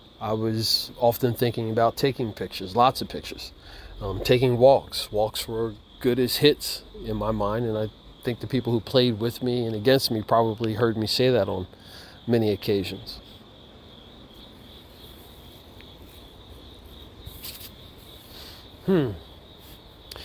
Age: 40-59